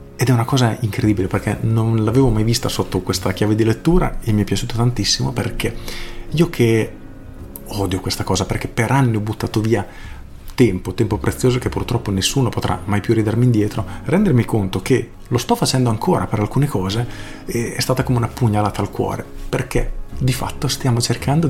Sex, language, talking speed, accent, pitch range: male, Italian, 180 wpm, native, 100-125 Hz